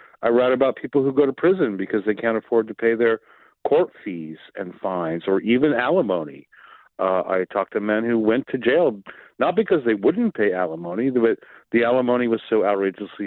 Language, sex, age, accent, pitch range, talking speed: English, male, 40-59, American, 105-140 Hz, 195 wpm